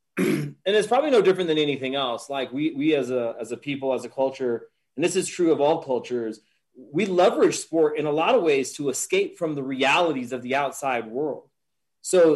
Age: 30-49